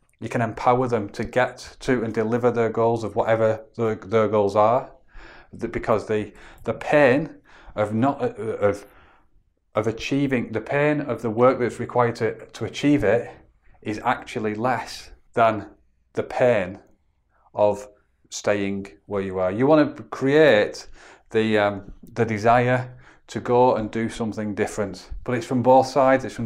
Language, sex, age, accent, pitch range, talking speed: English, male, 30-49, British, 110-130 Hz, 155 wpm